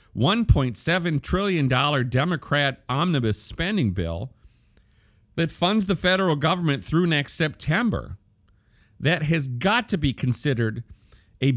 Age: 50-69